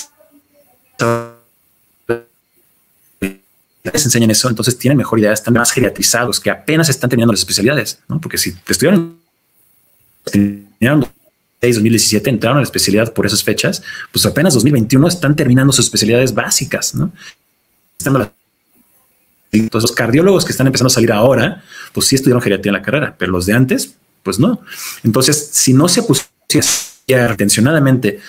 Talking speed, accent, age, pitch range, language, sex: 140 wpm, Mexican, 30-49, 105-130 Hz, Spanish, male